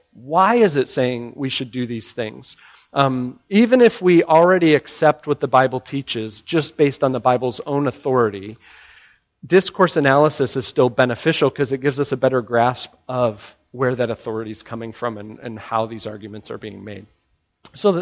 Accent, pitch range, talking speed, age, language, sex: American, 120-150 Hz, 180 wpm, 40-59, English, male